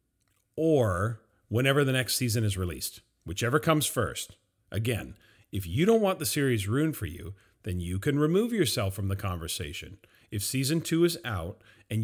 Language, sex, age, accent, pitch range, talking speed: English, male, 40-59, American, 100-145 Hz, 170 wpm